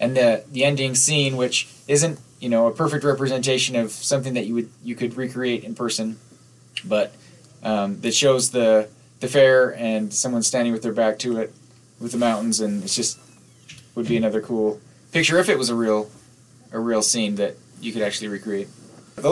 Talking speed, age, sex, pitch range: 195 wpm, 20-39, male, 120-135 Hz